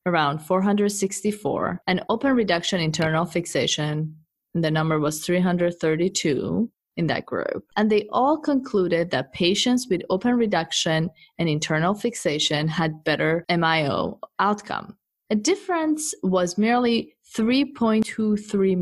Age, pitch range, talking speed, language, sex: 20-39, 165-225 Hz, 115 wpm, English, female